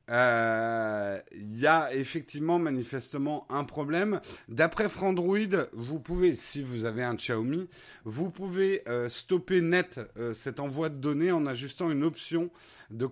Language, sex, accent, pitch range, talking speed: French, male, French, 115-170 Hz, 140 wpm